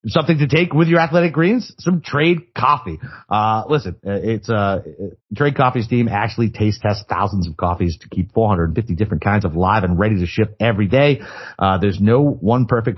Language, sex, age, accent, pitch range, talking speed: English, male, 30-49, American, 95-120 Hz, 195 wpm